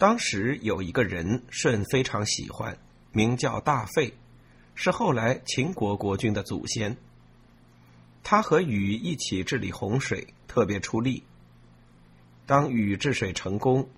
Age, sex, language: 50-69, male, Chinese